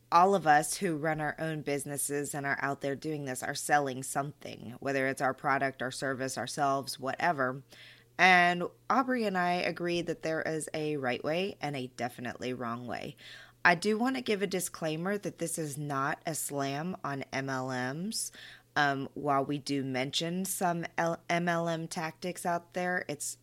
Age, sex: 20-39, female